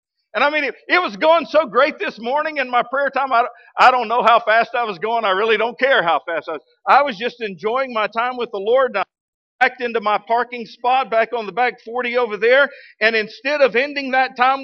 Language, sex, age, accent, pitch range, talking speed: English, male, 50-69, American, 205-265 Hz, 250 wpm